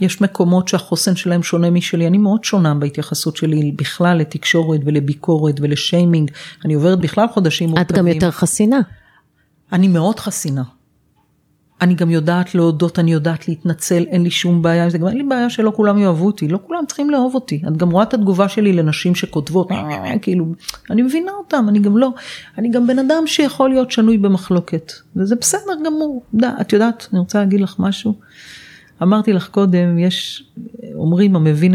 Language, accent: Hebrew, native